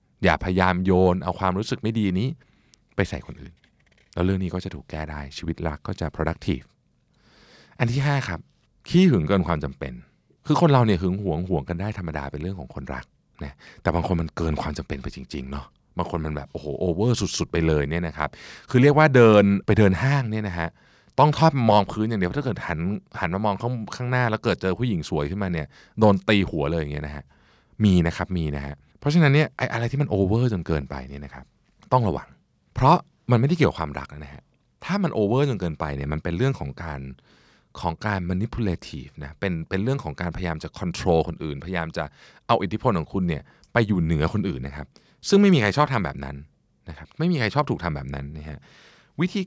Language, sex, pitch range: Thai, male, 80-125 Hz